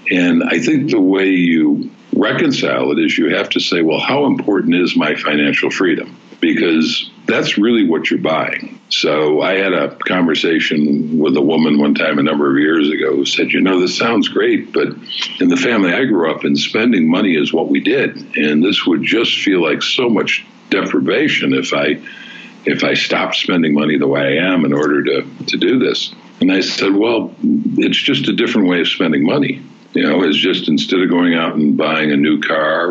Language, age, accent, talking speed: English, 60-79, American, 205 wpm